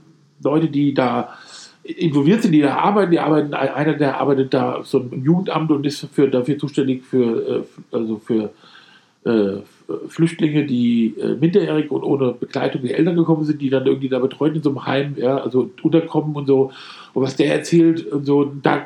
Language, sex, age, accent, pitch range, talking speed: German, male, 50-69, German, 135-165 Hz, 185 wpm